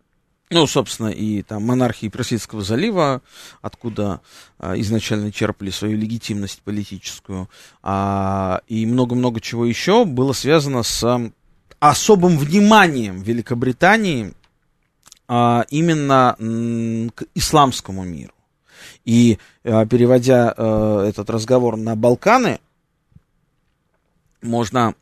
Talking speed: 80 wpm